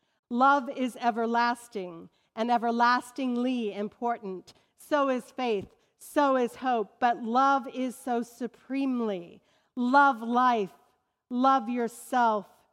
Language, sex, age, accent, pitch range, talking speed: English, female, 40-59, American, 205-245 Hz, 100 wpm